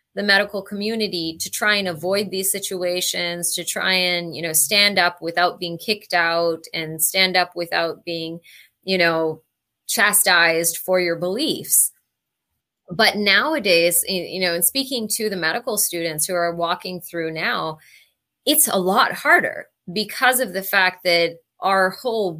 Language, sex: English, female